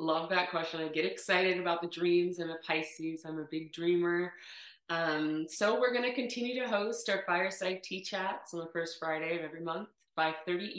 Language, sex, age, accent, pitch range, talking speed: English, female, 30-49, American, 160-200 Hz, 195 wpm